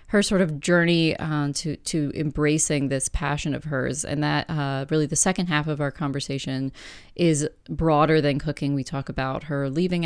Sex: female